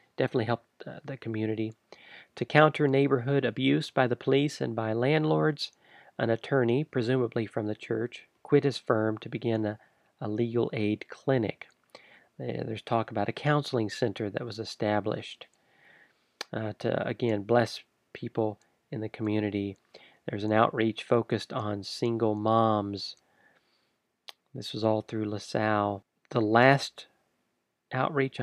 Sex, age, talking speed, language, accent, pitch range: male, 40-59, 130 wpm, English, American, 110-135 Hz